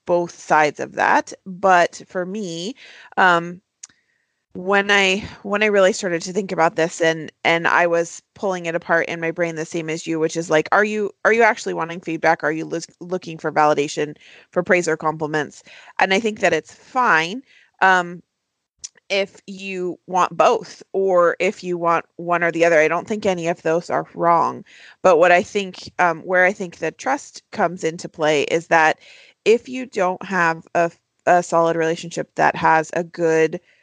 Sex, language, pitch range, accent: female, English, 165-190 Hz, American